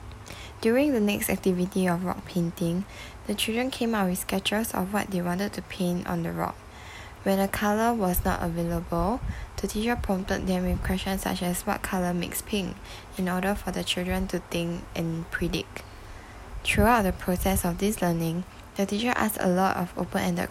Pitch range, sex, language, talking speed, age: 170-190 Hz, female, English, 180 wpm, 10-29